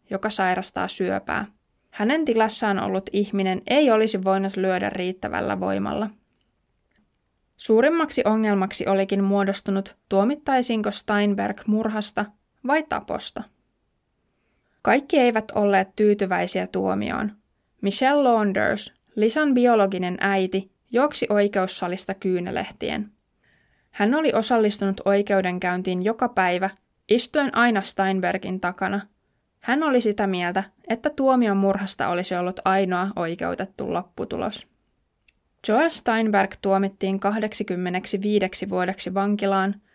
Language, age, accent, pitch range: Finnish, 20-39, native, 190-220 Hz